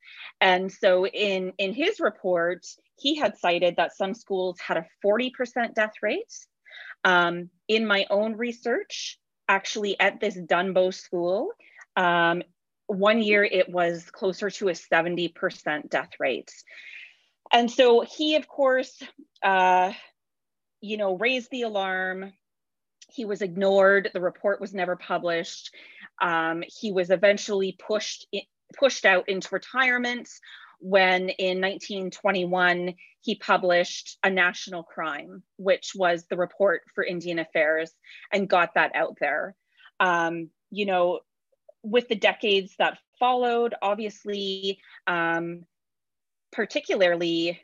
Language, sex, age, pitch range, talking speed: English, female, 30-49, 180-220 Hz, 120 wpm